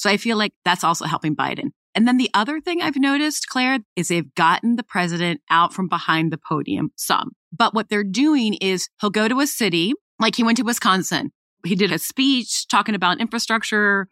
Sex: female